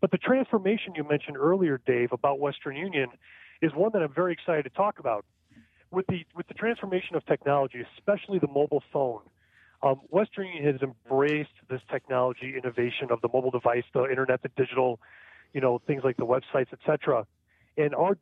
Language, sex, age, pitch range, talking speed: English, male, 40-59, 130-170 Hz, 185 wpm